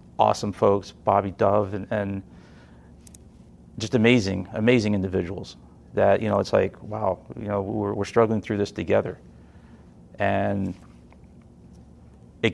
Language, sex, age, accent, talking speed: English, male, 40-59, American, 125 wpm